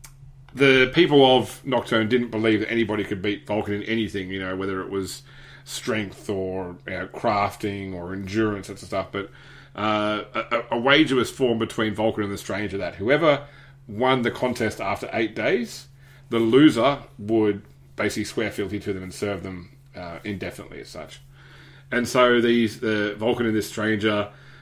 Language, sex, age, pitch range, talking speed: English, male, 30-49, 105-135 Hz, 175 wpm